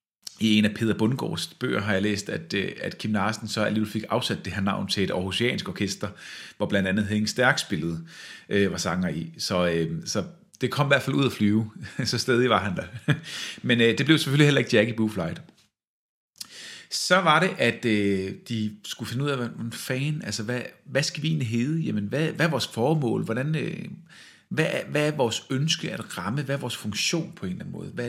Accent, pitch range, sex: native, 105-145 Hz, male